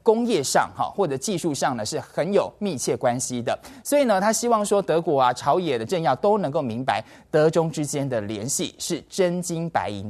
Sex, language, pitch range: male, Chinese, 130-185 Hz